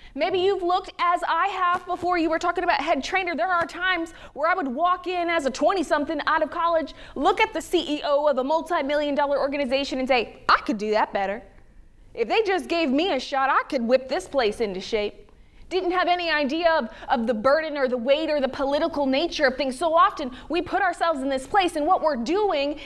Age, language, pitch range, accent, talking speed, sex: 20-39, English, 275-350 Hz, American, 230 wpm, female